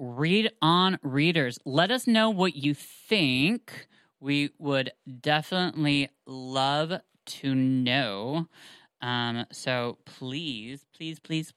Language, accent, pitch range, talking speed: English, American, 140-175 Hz, 105 wpm